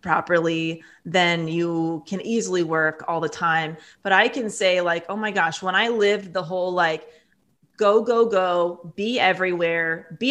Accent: American